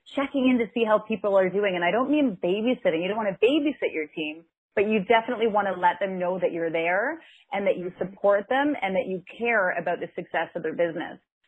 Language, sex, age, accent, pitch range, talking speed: English, female, 30-49, American, 175-220 Hz, 240 wpm